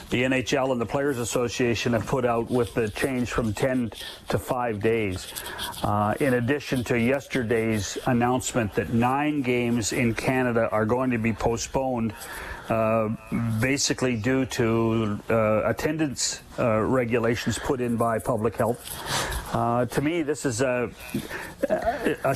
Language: English